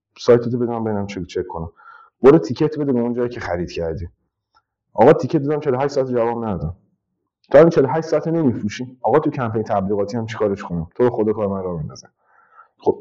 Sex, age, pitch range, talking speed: male, 30-49, 100-135 Hz, 180 wpm